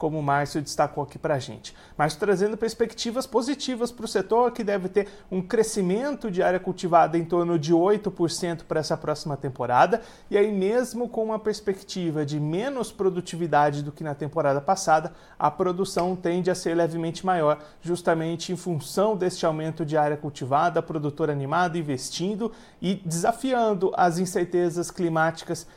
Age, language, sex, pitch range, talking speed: 30-49, Portuguese, male, 155-195 Hz, 160 wpm